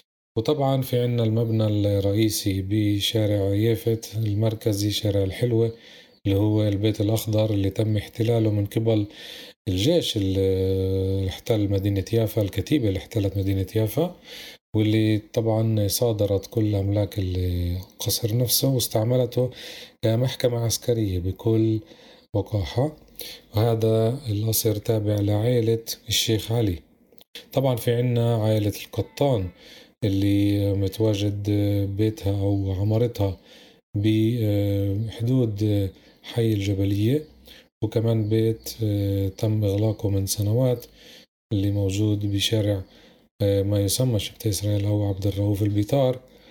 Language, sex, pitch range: Arabic, male, 100-120 Hz